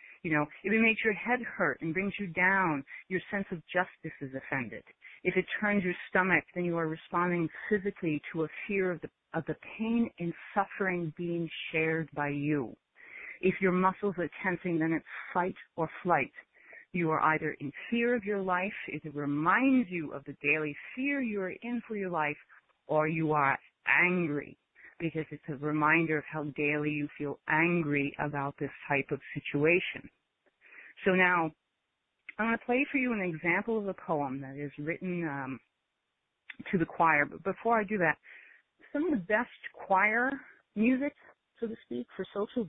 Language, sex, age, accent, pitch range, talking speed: English, female, 30-49, American, 150-200 Hz, 180 wpm